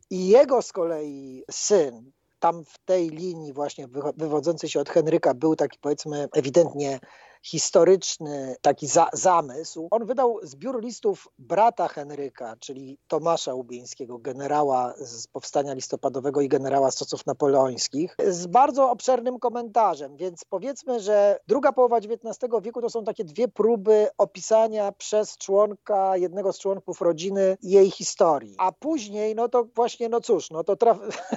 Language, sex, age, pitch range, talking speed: Polish, male, 40-59, 150-220 Hz, 140 wpm